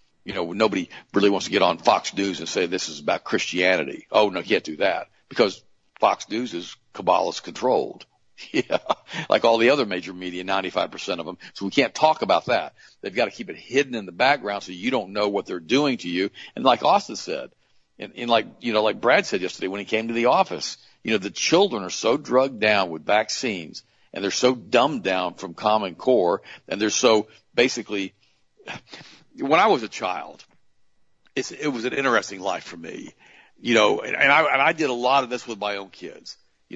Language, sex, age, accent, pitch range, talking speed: English, male, 50-69, American, 100-115 Hz, 215 wpm